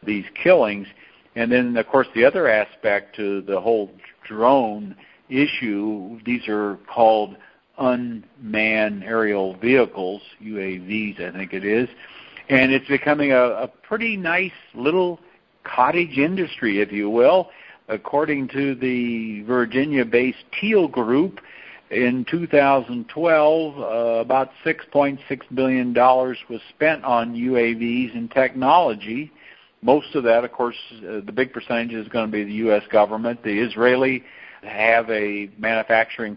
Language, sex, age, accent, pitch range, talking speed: English, male, 60-79, American, 110-130 Hz, 135 wpm